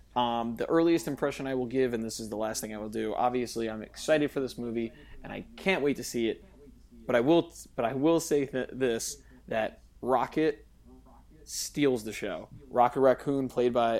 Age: 20-39